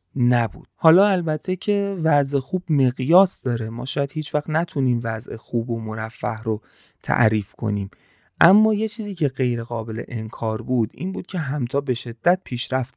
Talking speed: 160 wpm